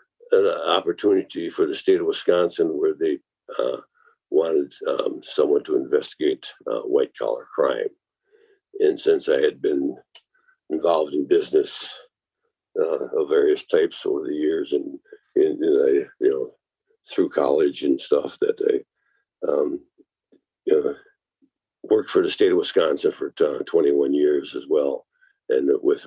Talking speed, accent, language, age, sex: 145 wpm, American, English, 60-79, male